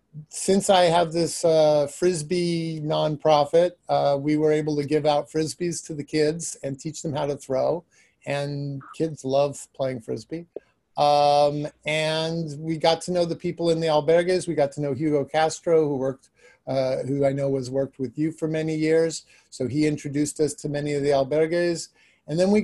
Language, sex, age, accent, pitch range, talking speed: English, male, 50-69, American, 145-170 Hz, 190 wpm